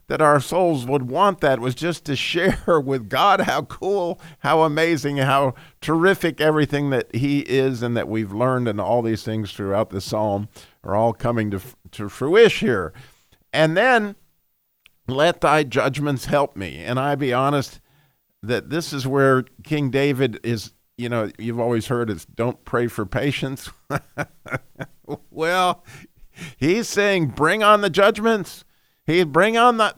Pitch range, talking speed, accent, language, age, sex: 125-175 Hz, 160 wpm, American, English, 50-69, male